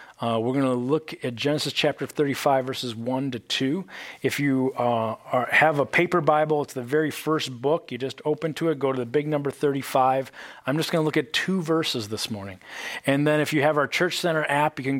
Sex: male